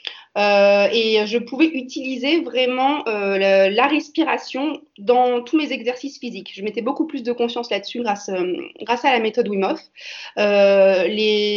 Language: French